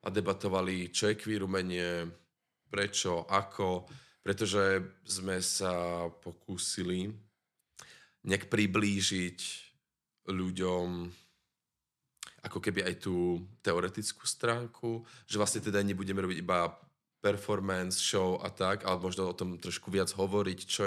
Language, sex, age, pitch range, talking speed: Czech, male, 20-39, 90-100 Hz, 110 wpm